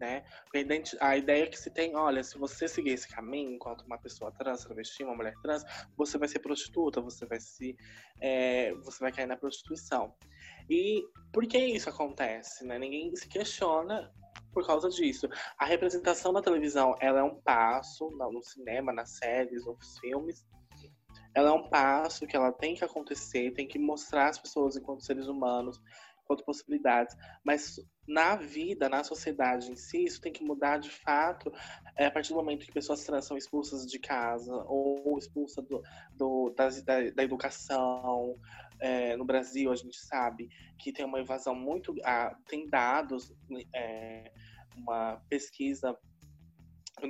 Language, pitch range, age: Portuguese, 125-150 Hz, 20-39